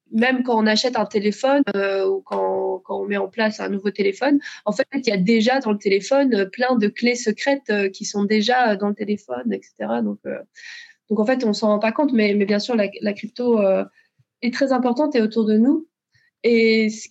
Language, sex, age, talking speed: French, female, 20-39, 230 wpm